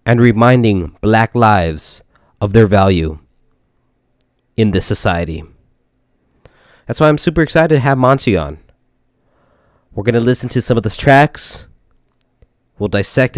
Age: 30-49